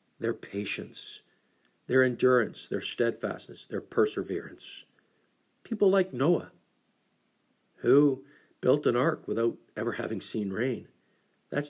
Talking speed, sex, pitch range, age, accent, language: 110 wpm, male, 120-150 Hz, 50-69, American, English